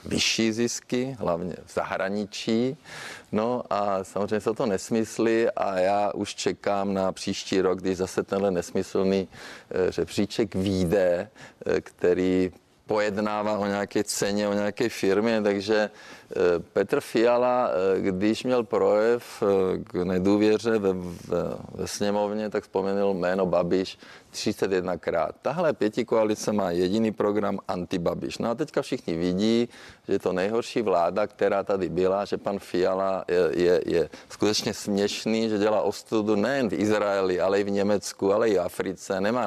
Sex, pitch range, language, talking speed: male, 95-115 Hz, Czech, 135 wpm